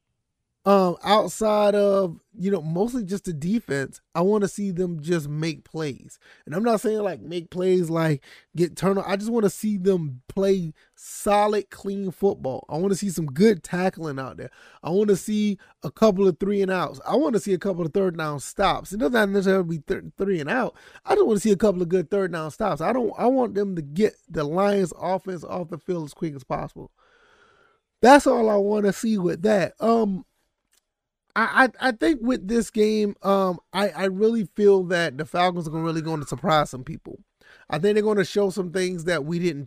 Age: 30-49